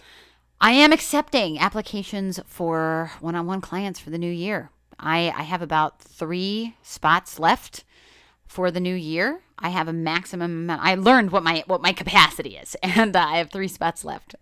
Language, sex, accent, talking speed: English, female, American, 175 wpm